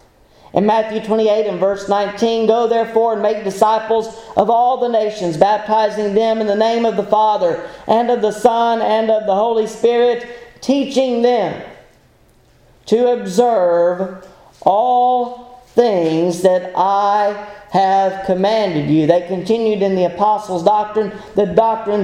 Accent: American